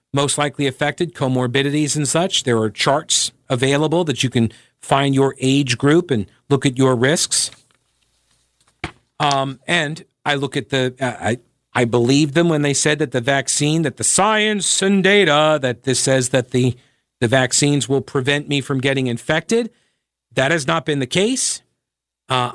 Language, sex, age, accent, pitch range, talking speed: English, male, 50-69, American, 130-160 Hz, 170 wpm